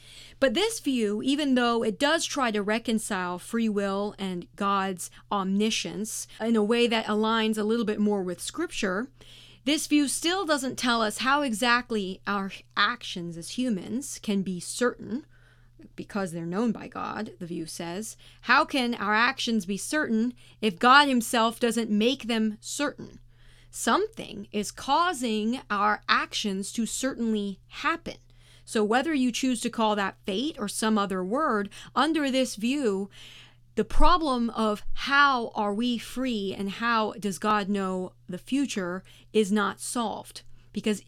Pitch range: 195-245 Hz